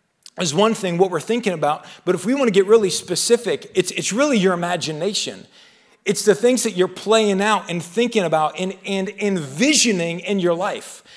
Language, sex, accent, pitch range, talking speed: English, male, American, 180-215 Hz, 195 wpm